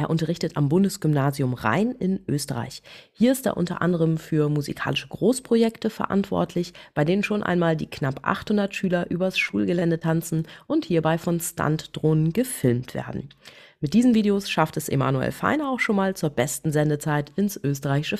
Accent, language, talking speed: German, German, 160 wpm